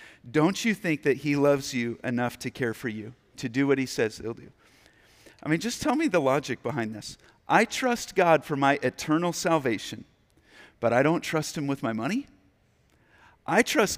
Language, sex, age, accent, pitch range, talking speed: English, male, 50-69, American, 125-165 Hz, 195 wpm